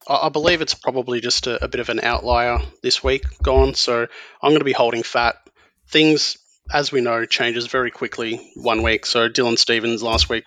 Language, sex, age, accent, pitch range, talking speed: English, male, 30-49, Australian, 115-135 Hz, 200 wpm